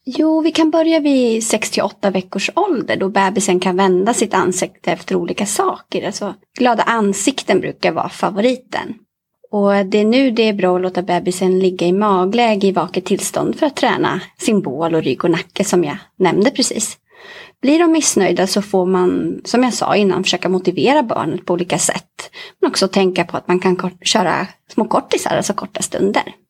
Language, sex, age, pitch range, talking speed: Swahili, female, 30-49, 185-255 Hz, 190 wpm